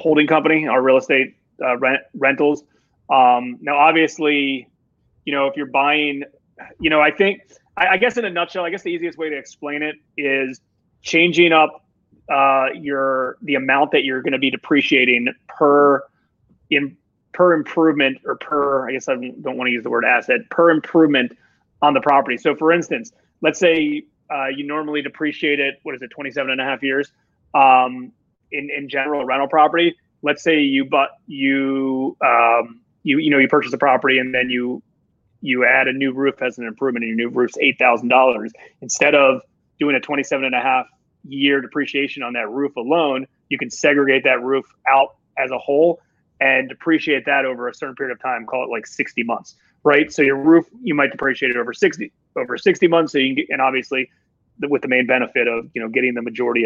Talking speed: 200 wpm